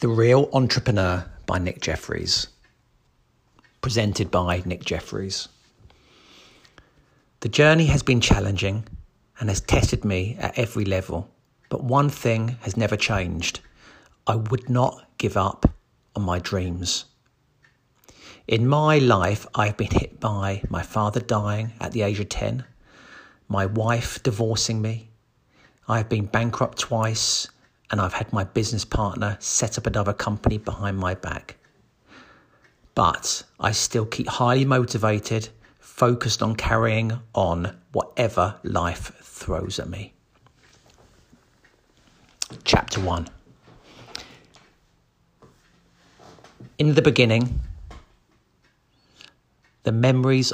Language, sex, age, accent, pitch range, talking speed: English, male, 50-69, British, 100-120 Hz, 110 wpm